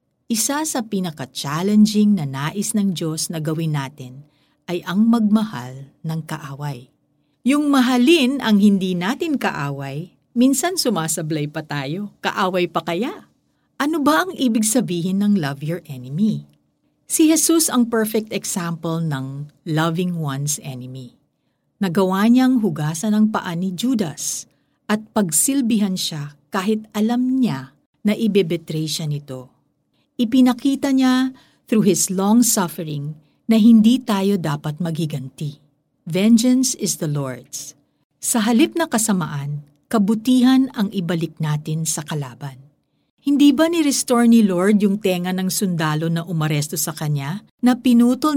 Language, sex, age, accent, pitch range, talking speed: Filipino, female, 50-69, native, 155-240 Hz, 130 wpm